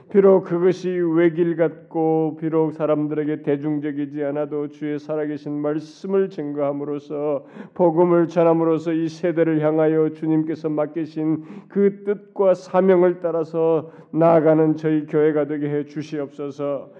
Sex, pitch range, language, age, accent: male, 160-185 Hz, Korean, 30-49, native